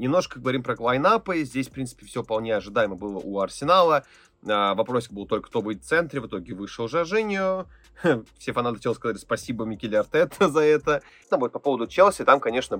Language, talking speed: Russian, 190 wpm